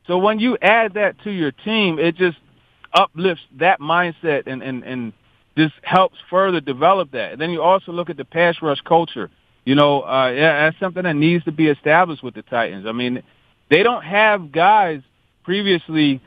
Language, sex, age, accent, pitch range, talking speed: English, male, 40-59, American, 130-170 Hz, 190 wpm